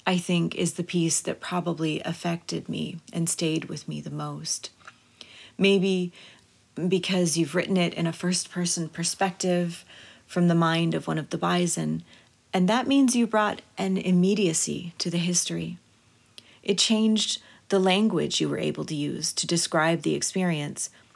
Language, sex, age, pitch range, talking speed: English, female, 30-49, 170-195 Hz, 155 wpm